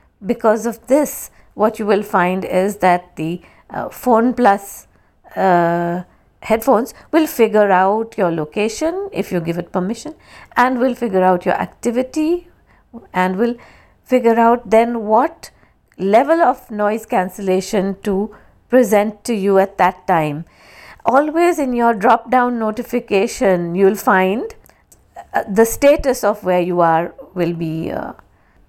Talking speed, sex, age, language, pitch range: 140 wpm, female, 50-69, English, 180-235 Hz